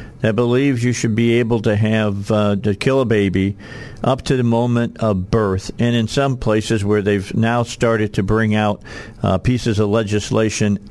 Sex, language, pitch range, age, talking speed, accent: male, English, 105-135 Hz, 50-69, 185 wpm, American